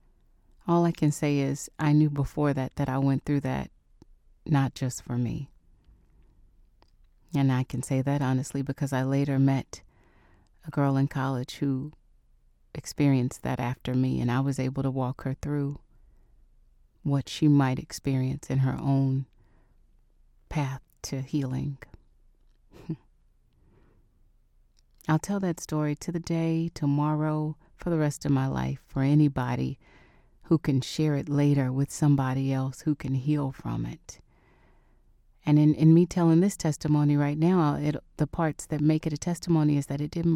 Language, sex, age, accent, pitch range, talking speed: English, female, 30-49, American, 130-155 Hz, 155 wpm